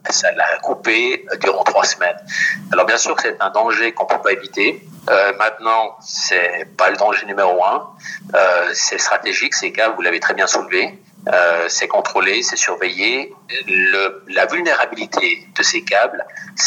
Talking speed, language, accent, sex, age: 175 wpm, French, French, male, 50-69